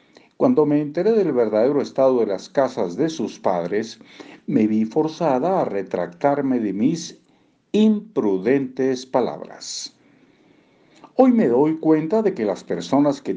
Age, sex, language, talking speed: 50-69, male, Spanish, 135 wpm